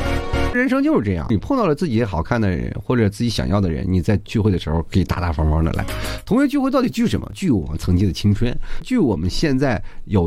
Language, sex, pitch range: Chinese, male, 95-125 Hz